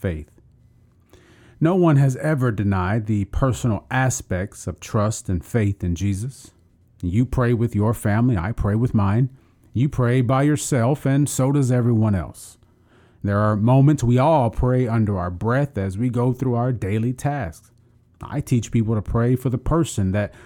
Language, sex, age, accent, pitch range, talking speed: English, male, 40-59, American, 100-130 Hz, 170 wpm